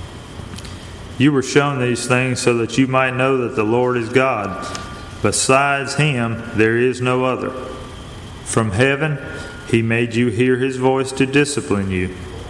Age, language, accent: 40-59, English, American